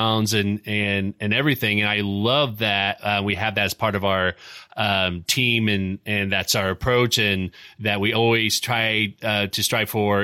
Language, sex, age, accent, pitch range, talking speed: English, male, 30-49, American, 105-120 Hz, 190 wpm